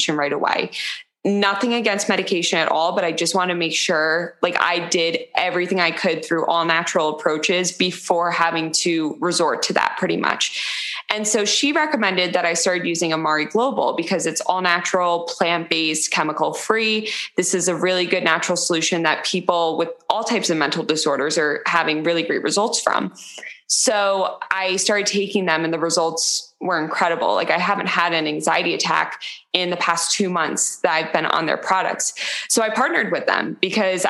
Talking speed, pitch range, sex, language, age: 185 wpm, 170-200 Hz, female, English, 20-39